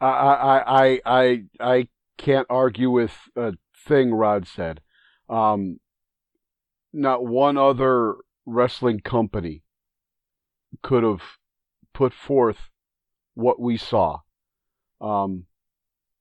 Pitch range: 105-130 Hz